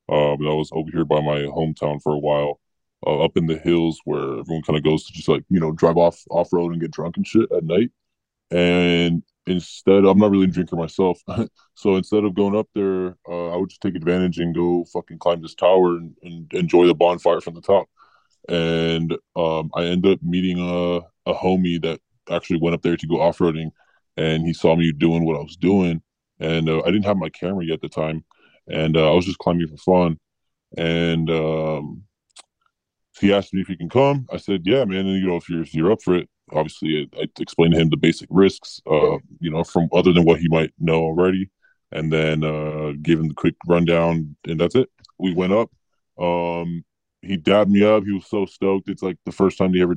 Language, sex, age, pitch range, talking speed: English, female, 10-29, 80-90 Hz, 225 wpm